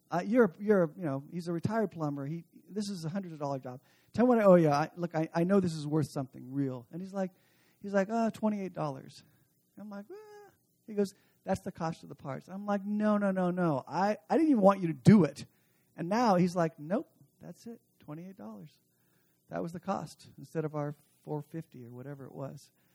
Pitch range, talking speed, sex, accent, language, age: 140-205 Hz, 215 wpm, male, American, English, 40-59